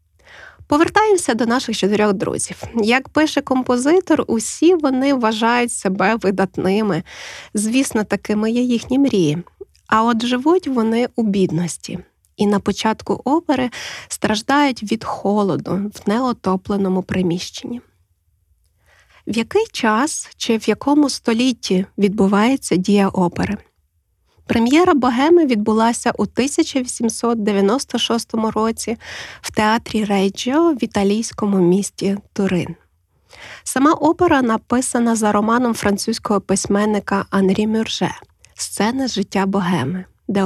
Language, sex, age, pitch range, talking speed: Ukrainian, female, 20-39, 195-255 Hz, 105 wpm